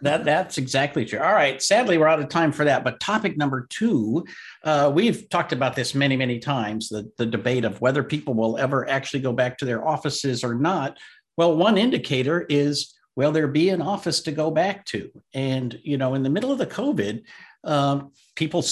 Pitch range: 130-165 Hz